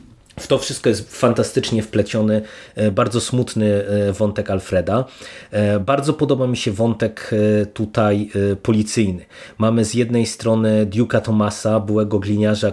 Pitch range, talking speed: 105-115 Hz, 120 wpm